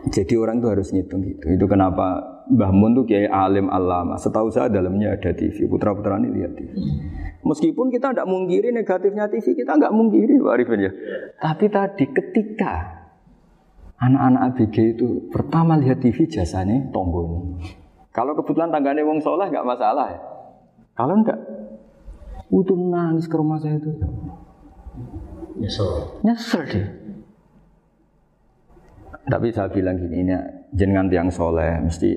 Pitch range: 95-150 Hz